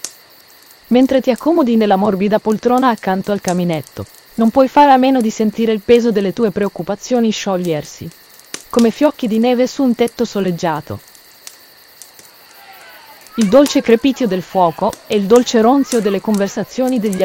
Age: 30-49